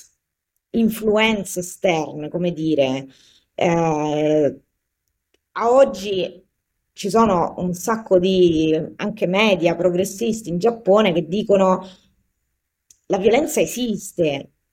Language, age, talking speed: Italian, 20-39, 90 wpm